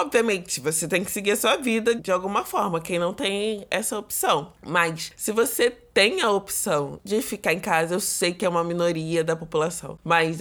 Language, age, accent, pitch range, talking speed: Portuguese, 20-39, Brazilian, 170-220 Hz, 200 wpm